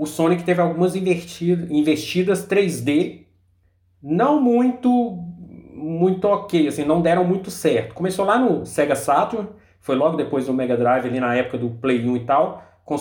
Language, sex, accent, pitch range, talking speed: Portuguese, male, Brazilian, 125-185 Hz, 155 wpm